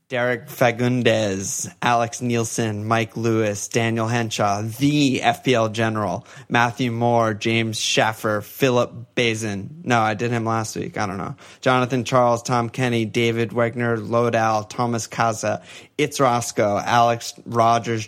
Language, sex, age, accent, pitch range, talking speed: English, male, 20-39, American, 110-130 Hz, 130 wpm